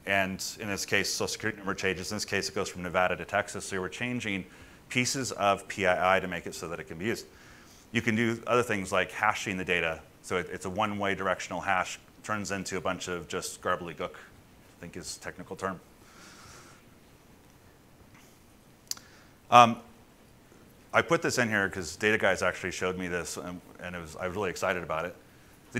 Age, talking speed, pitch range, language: 30-49, 200 wpm, 95-115 Hz, English